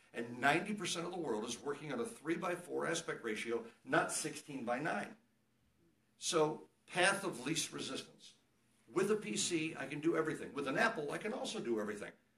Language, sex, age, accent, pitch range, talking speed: English, male, 60-79, American, 125-180 Hz, 185 wpm